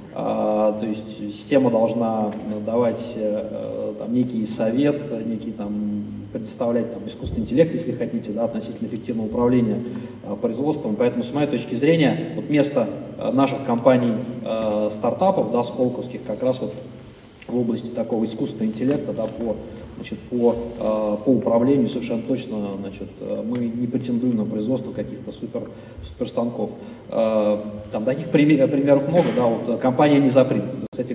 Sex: male